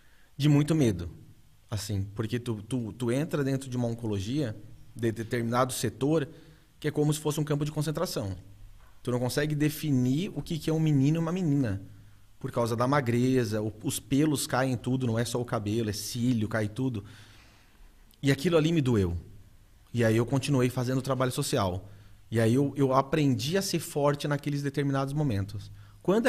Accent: Brazilian